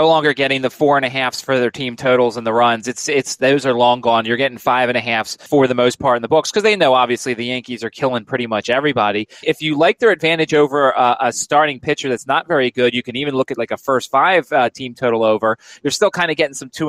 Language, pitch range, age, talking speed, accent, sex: English, 125-155 Hz, 30-49, 280 wpm, American, male